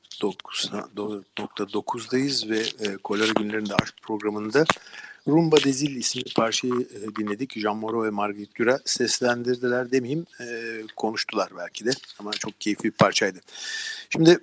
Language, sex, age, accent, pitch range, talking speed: Turkish, male, 50-69, native, 115-145 Hz, 120 wpm